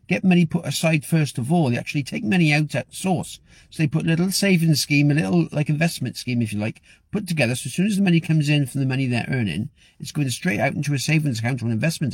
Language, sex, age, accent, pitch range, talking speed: English, male, 50-69, British, 130-175 Hz, 270 wpm